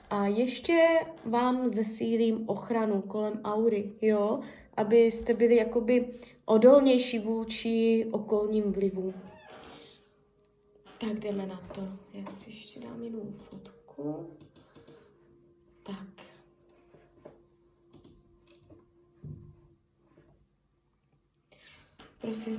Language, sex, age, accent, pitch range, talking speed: Czech, female, 20-39, native, 190-220 Hz, 75 wpm